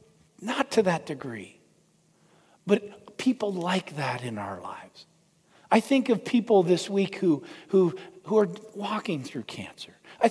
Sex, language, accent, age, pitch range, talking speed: male, English, American, 50-69, 155-200 Hz, 145 wpm